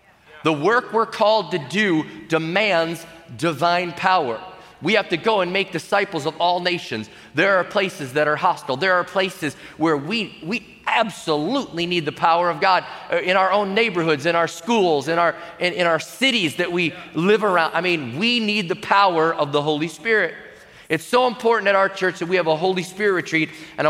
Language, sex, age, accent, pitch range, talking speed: English, male, 30-49, American, 155-185 Hz, 195 wpm